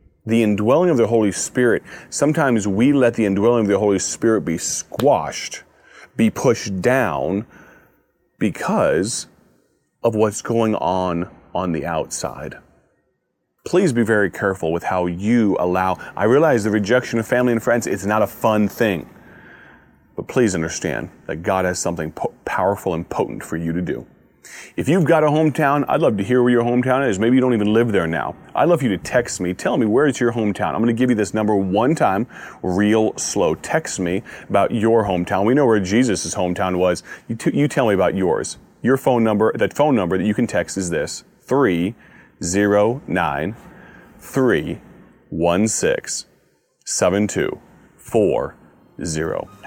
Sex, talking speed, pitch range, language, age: male, 165 wpm, 95-120 Hz, English, 30-49